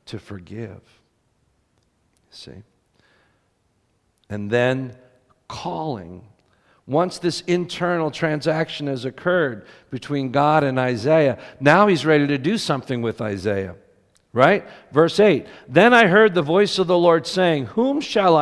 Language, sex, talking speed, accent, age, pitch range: English, male, 125 wpm, American, 50-69, 115-180 Hz